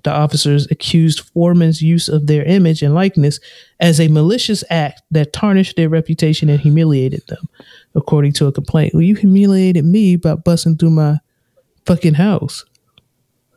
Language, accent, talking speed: English, American, 155 wpm